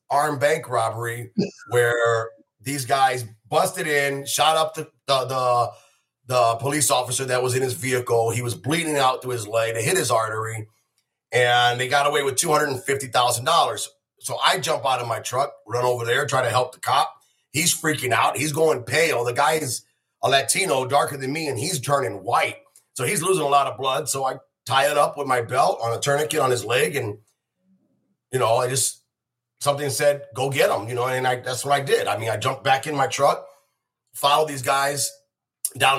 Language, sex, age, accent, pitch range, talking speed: English, male, 30-49, American, 120-145 Hz, 200 wpm